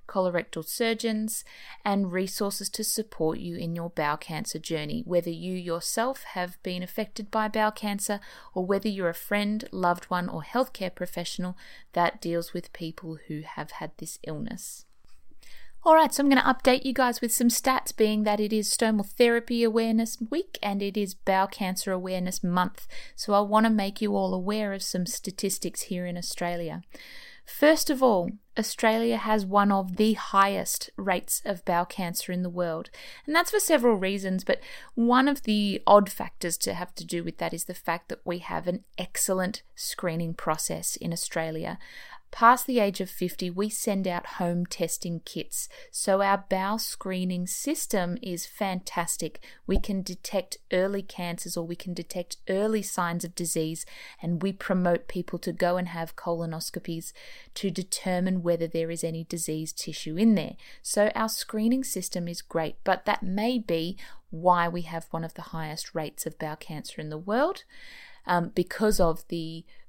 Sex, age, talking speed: female, 30-49, 175 wpm